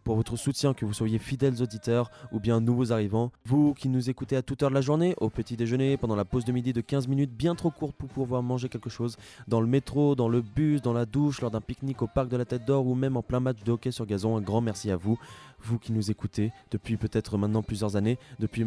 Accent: French